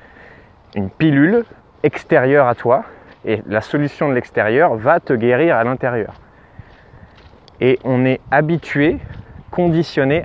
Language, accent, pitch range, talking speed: French, French, 105-140 Hz, 115 wpm